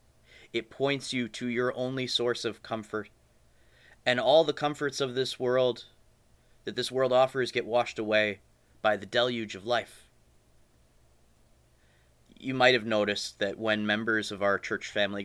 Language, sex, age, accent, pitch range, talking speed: English, male, 30-49, American, 100-125 Hz, 155 wpm